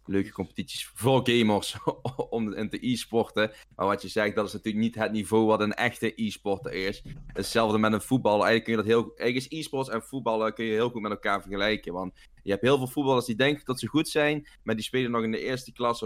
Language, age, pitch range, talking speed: Dutch, 20-39, 100-115 Hz, 240 wpm